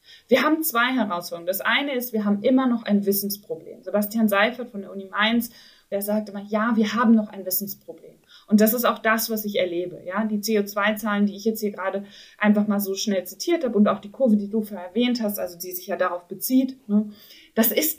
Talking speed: 225 wpm